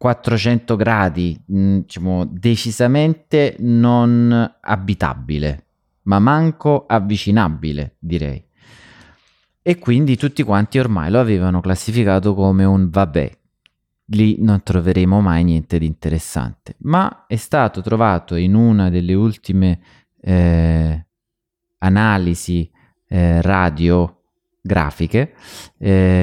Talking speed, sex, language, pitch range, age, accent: 90 wpm, male, Italian, 90-120 Hz, 30-49, native